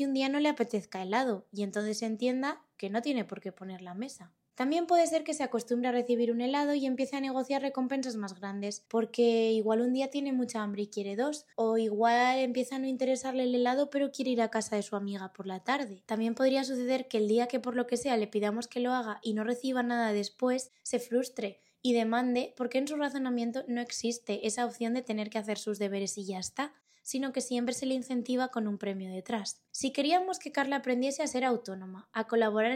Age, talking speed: 20-39, 230 wpm